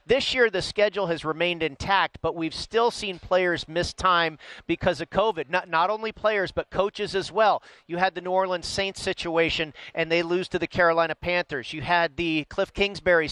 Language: English